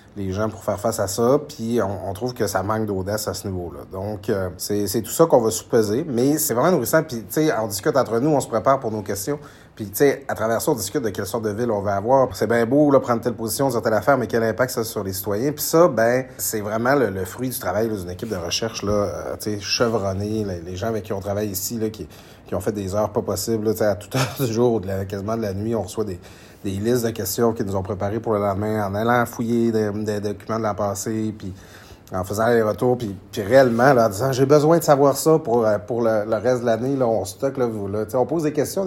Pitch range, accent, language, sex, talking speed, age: 105-125 Hz, Belgian, French, male, 285 wpm, 30-49